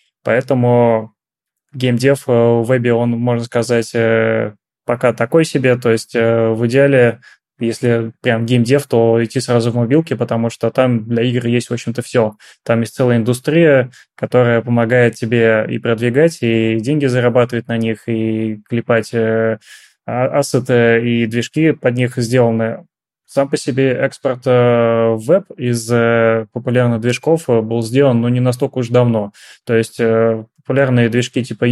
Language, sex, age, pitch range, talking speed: Russian, male, 20-39, 115-125 Hz, 140 wpm